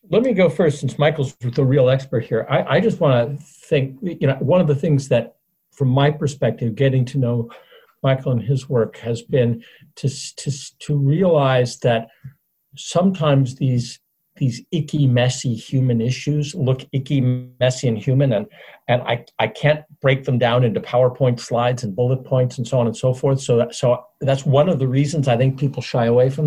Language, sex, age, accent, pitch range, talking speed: English, male, 60-79, American, 130-155 Hz, 190 wpm